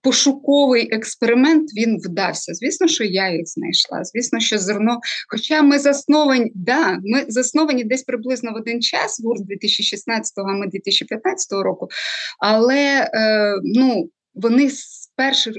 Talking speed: 125 wpm